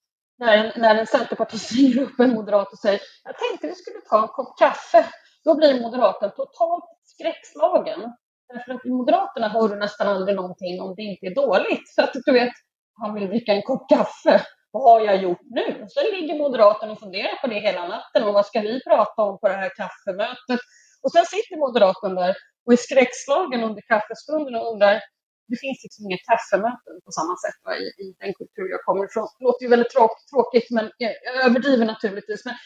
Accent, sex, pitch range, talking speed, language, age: Swedish, female, 215-300 Hz, 200 wpm, English, 30-49